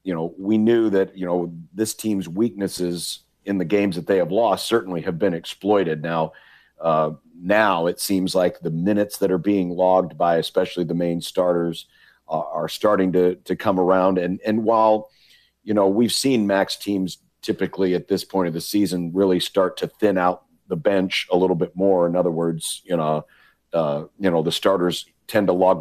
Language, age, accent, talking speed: English, 50-69, American, 200 wpm